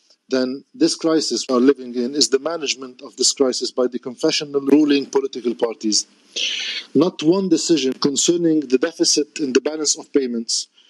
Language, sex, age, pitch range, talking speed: Arabic, male, 50-69, 140-170 Hz, 165 wpm